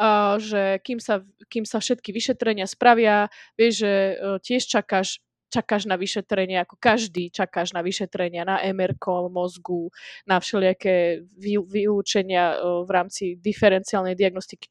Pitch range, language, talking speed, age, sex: 190-230 Hz, Slovak, 120 wpm, 20-39, female